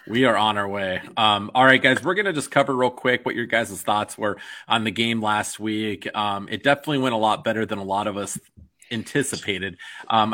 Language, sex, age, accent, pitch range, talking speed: English, male, 30-49, American, 105-120 Hz, 230 wpm